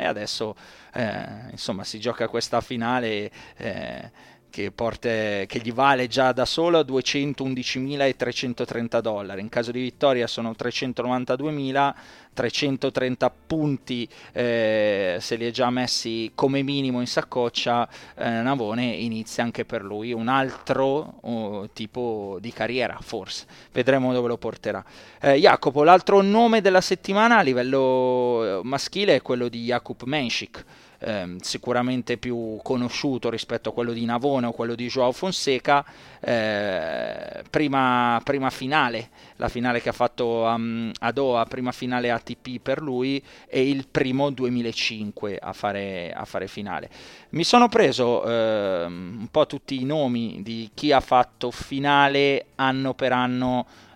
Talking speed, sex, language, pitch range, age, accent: 135 wpm, male, Italian, 115-135 Hz, 20-39, native